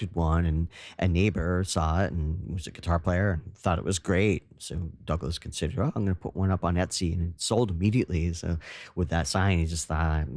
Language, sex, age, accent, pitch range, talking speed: English, male, 40-59, American, 85-100 Hz, 230 wpm